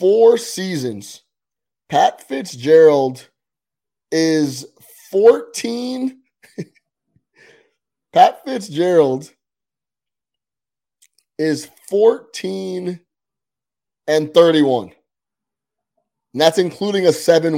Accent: American